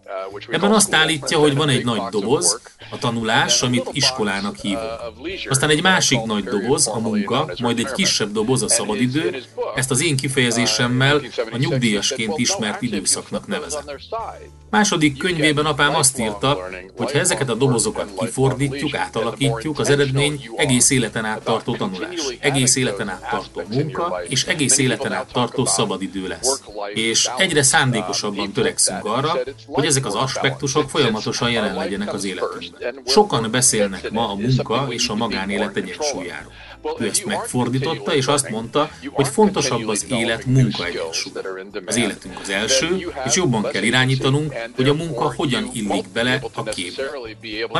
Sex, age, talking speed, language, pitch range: male, 30-49, 150 wpm, Hungarian, 115-145 Hz